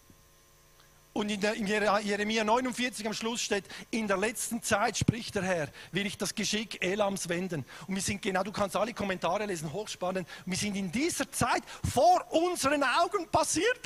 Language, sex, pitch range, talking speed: German, male, 195-240 Hz, 175 wpm